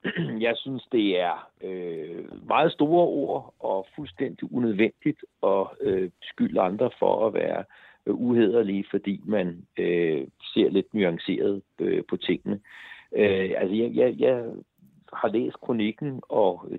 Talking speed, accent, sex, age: 130 wpm, native, male, 60-79